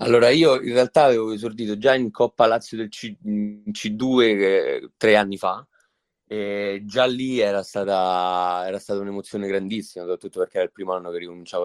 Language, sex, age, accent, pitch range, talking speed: Italian, male, 20-39, native, 95-115 Hz, 165 wpm